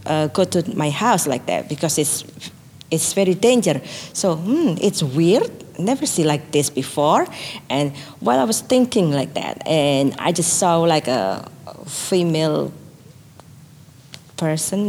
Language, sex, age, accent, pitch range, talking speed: English, female, 40-59, Malaysian, 150-215 Hz, 145 wpm